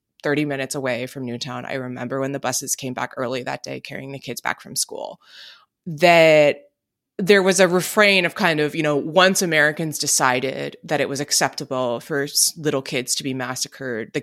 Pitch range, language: 145-215 Hz, English